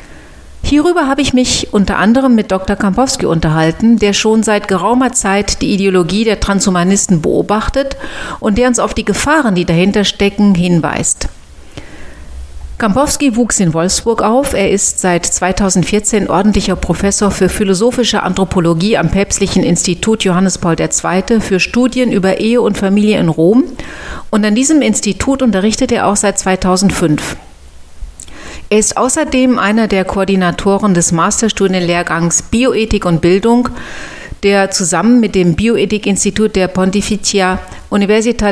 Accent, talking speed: German, 135 wpm